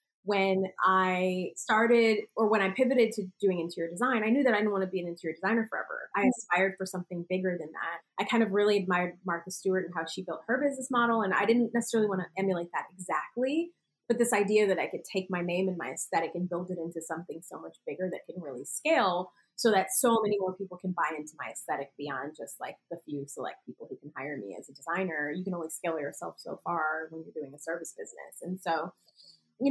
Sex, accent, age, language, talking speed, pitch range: female, American, 20-39, English, 240 wpm, 170-215 Hz